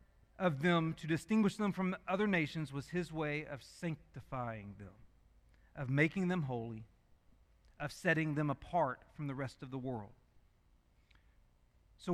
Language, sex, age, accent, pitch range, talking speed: English, male, 40-59, American, 125-195 Hz, 145 wpm